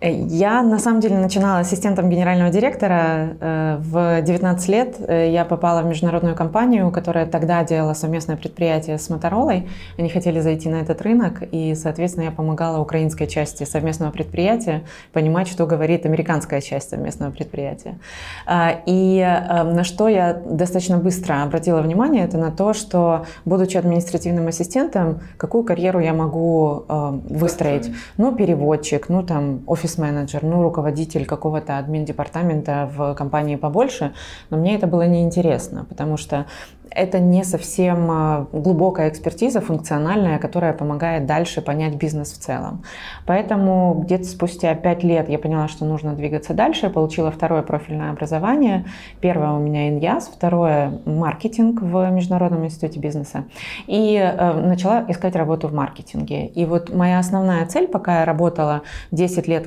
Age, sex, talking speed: 20-39, female, 140 wpm